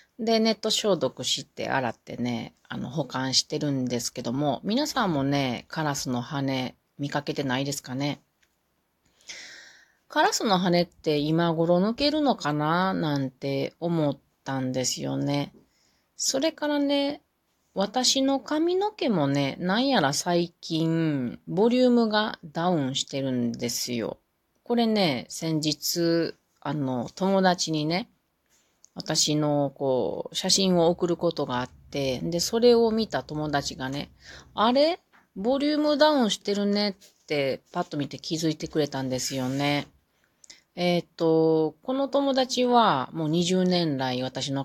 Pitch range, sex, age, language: 135-200 Hz, female, 30-49, Japanese